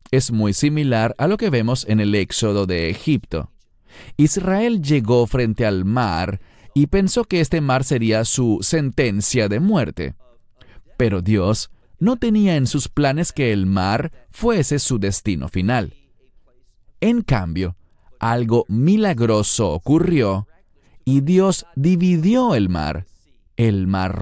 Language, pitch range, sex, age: English, 100-160 Hz, male, 30-49